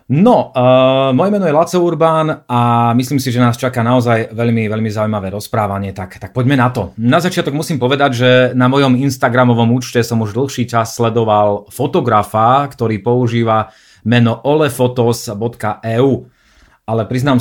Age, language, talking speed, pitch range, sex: 30-49, Slovak, 150 wpm, 105-130 Hz, male